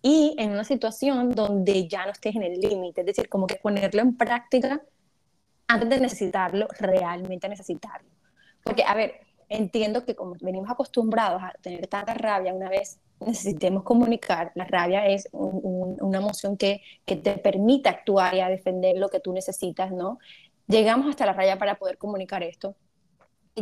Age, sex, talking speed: 20-39, female, 175 wpm